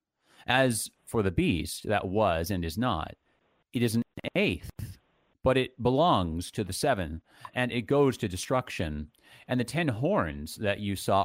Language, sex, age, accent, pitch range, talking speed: English, male, 30-49, American, 90-125 Hz, 165 wpm